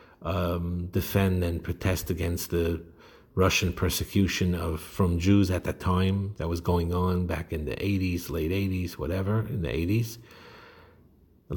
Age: 50-69